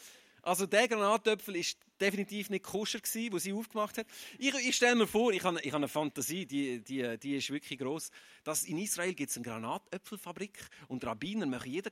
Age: 40-59